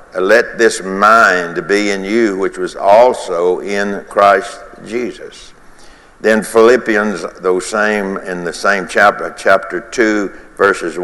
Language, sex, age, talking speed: English, male, 60-79, 125 wpm